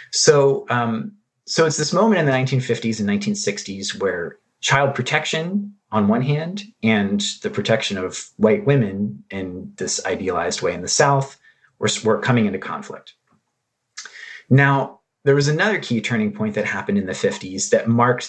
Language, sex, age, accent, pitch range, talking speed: English, male, 30-49, American, 105-150 Hz, 160 wpm